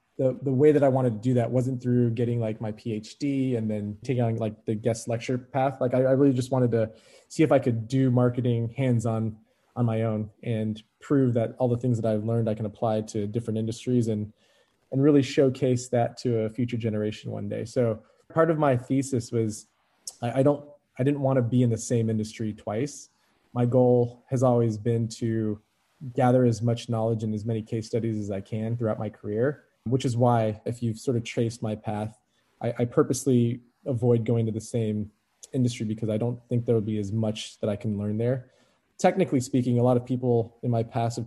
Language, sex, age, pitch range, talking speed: English, male, 20-39, 110-125 Hz, 220 wpm